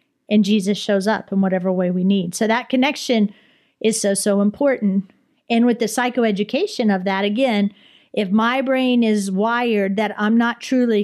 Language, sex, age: English, female, 40-59